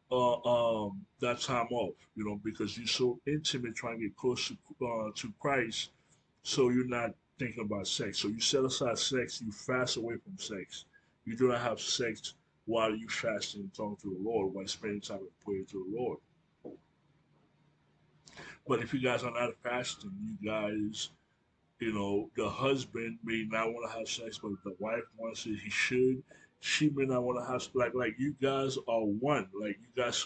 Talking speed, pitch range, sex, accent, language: 195 wpm, 105-125 Hz, male, American, English